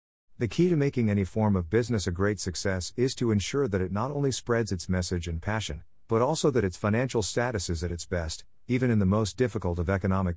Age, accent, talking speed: 50-69, American, 230 wpm